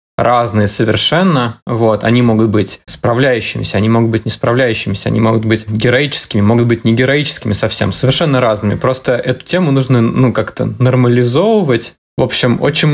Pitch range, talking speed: 115-140 Hz, 155 wpm